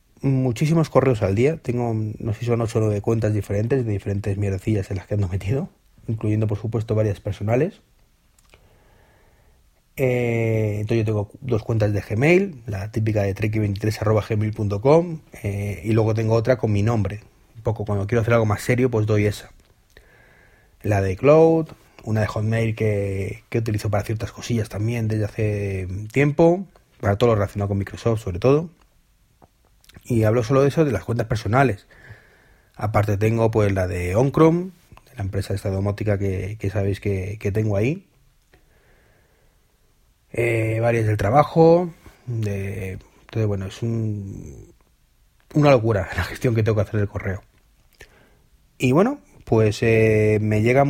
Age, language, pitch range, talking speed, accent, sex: 30-49, Spanish, 100-125 Hz, 160 wpm, Spanish, male